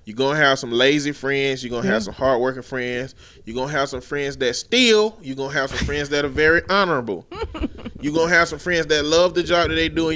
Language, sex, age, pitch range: English, male, 20-39, 135-160 Hz